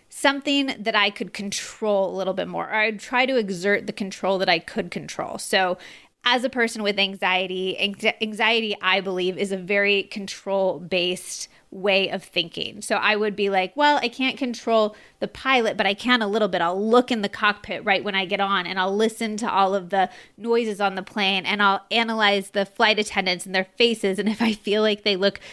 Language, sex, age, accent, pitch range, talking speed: English, female, 20-39, American, 190-225 Hz, 210 wpm